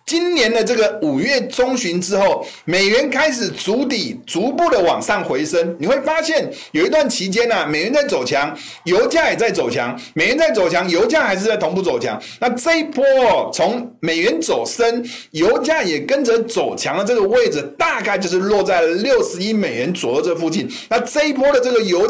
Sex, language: male, Chinese